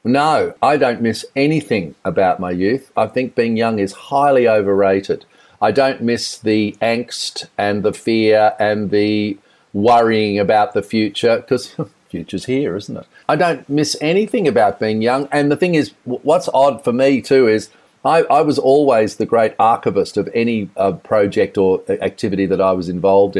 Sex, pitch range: male, 100-120 Hz